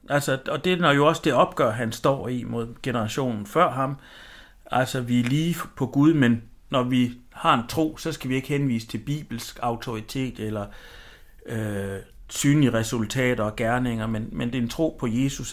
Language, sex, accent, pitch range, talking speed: Danish, male, native, 110-140 Hz, 180 wpm